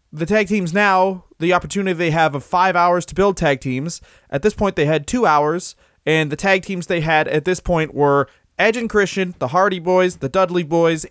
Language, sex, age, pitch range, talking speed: English, male, 20-39, 145-185 Hz, 220 wpm